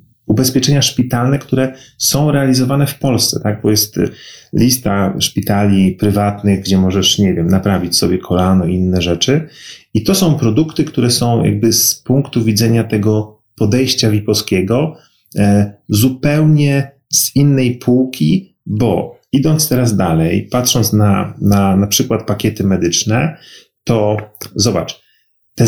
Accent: native